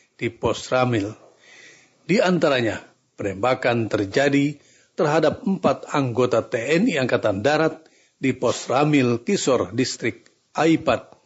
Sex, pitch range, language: male, 120-150 Hz, Indonesian